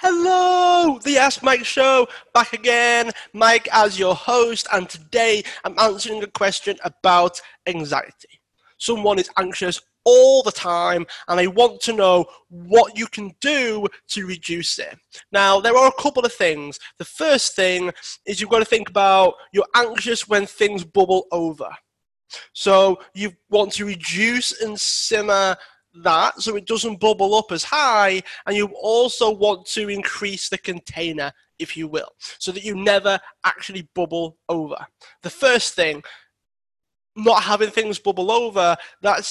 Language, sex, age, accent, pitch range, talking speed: English, male, 20-39, British, 185-225 Hz, 155 wpm